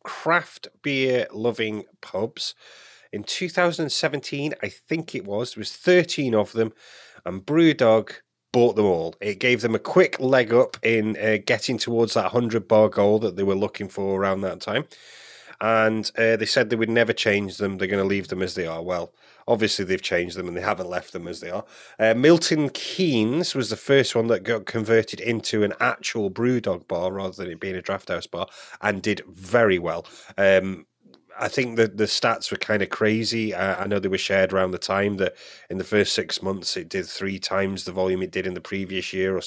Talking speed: 215 wpm